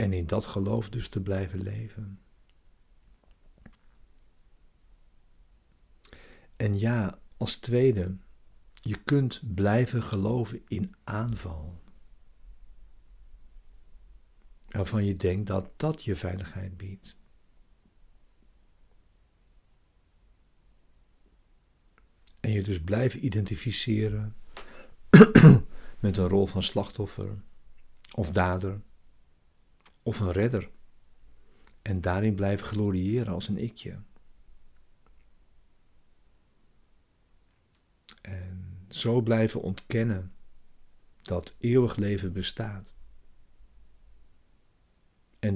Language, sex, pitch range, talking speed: Dutch, male, 90-110 Hz, 75 wpm